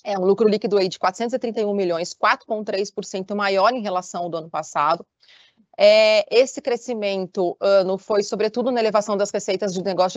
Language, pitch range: Portuguese, 195-230 Hz